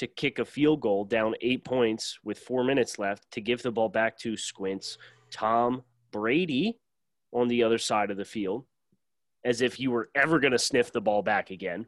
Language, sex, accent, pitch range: English, male, American, 100-125 Hz